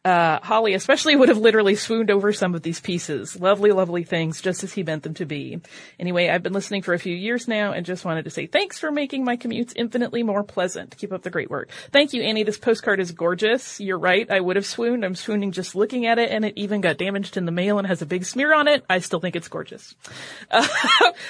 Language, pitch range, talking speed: English, 180-240 Hz, 250 wpm